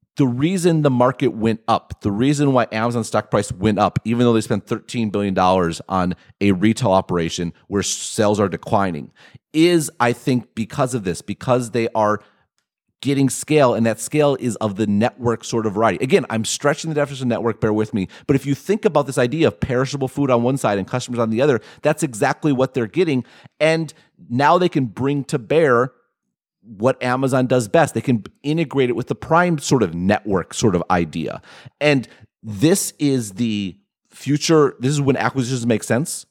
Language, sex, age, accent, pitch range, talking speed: English, male, 30-49, American, 105-135 Hz, 190 wpm